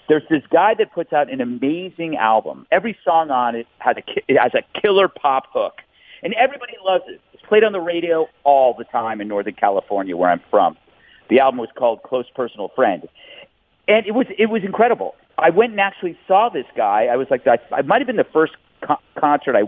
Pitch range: 135-215 Hz